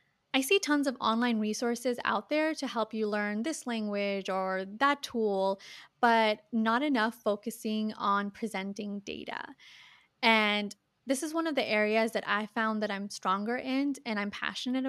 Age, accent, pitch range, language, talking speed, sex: 20-39, American, 200-235 Hz, English, 165 wpm, female